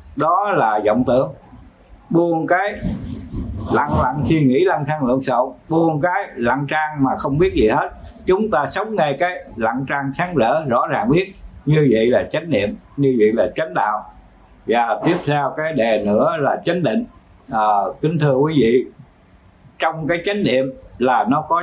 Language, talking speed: Vietnamese, 185 wpm